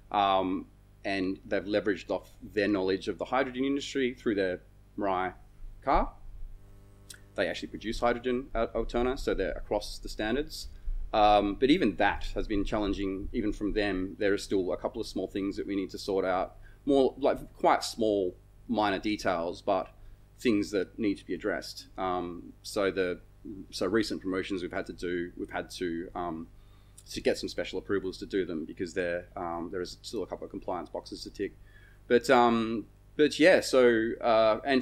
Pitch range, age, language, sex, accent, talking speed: 100-115 Hz, 30-49, English, male, Australian, 180 wpm